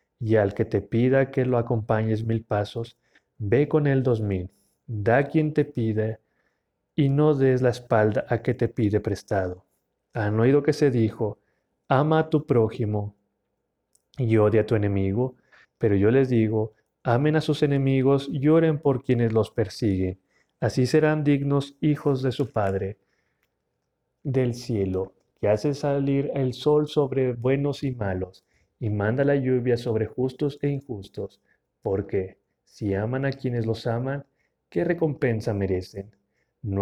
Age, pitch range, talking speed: 40-59, 105-140 Hz, 150 wpm